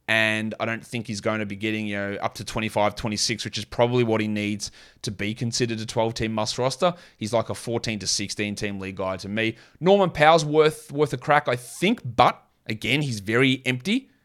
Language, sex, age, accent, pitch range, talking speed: English, male, 30-49, Australian, 110-140 Hz, 215 wpm